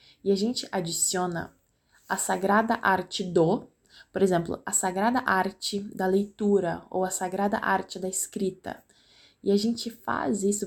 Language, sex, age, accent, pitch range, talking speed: Portuguese, female, 20-39, Brazilian, 170-200 Hz, 145 wpm